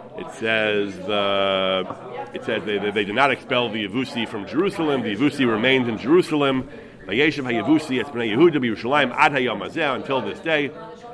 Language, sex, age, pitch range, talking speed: English, male, 40-59, 115-160 Hz, 125 wpm